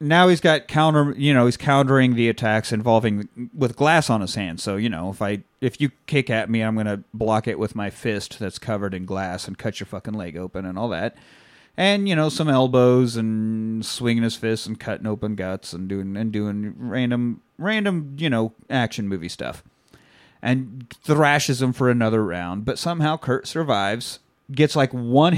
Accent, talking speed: American, 195 wpm